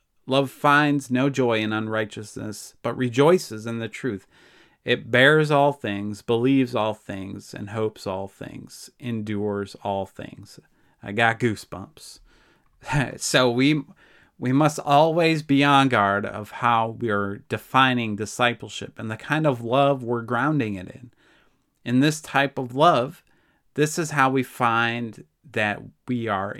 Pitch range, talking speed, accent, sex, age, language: 105-135 Hz, 145 wpm, American, male, 30-49, English